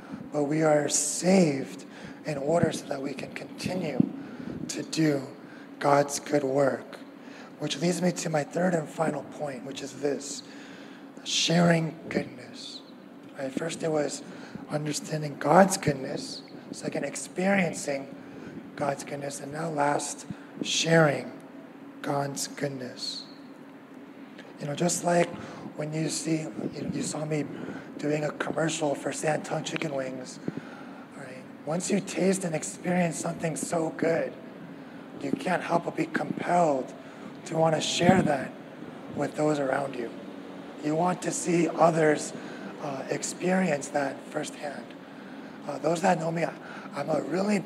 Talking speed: 130 wpm